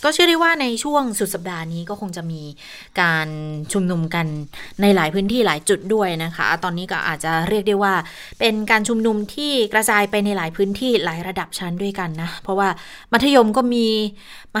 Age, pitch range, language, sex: 20-39, 175-220 Hz, Thai, female